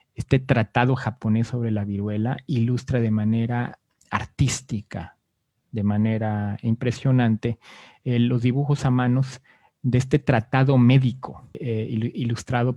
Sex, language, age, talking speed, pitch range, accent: male, Spanish, 40-59, 115 wpm, 110-135 Hz, Mexican